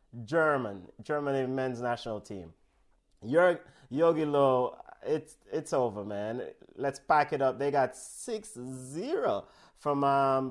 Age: 30-49